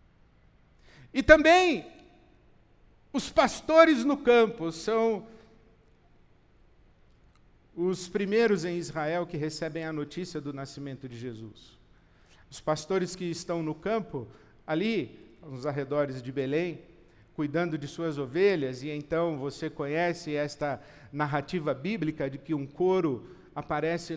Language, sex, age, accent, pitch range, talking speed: Portuguese, male, 50-69, Brazilian, 145-185 Hz, 115 wpm